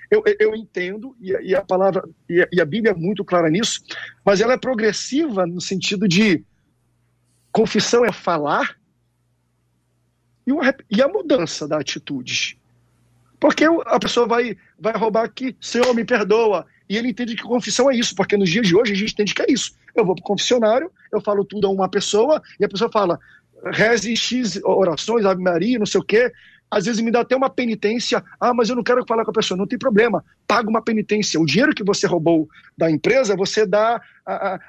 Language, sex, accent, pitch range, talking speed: Portuguese, male, Brazilian, 180-235 Hz, 195 wpm